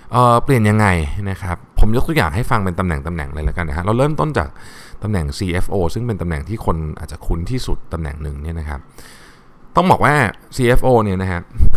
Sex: male